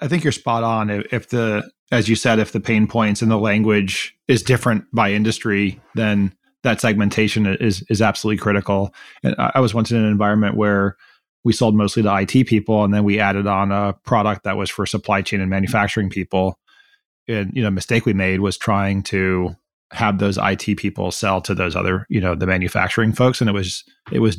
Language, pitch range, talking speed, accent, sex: English, 100-115 Hz, 205 wpm, American, male